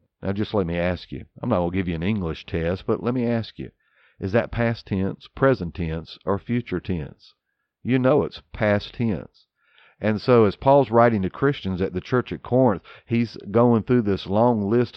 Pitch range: 95-115 Hz